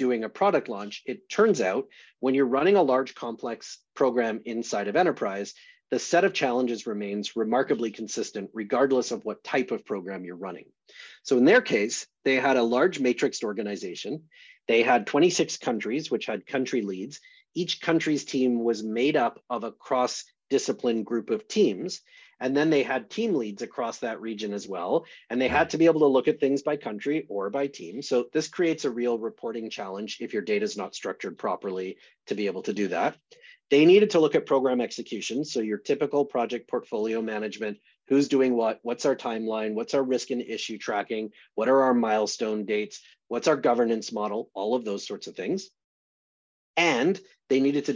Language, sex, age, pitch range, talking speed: English, male, 30-49, 110-150 Hz, 190 wpm